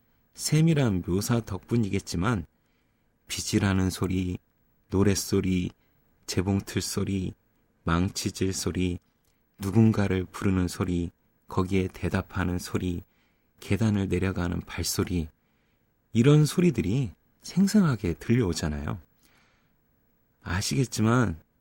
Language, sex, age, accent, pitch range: Korean, male, 30-49, native, 90-125 Hz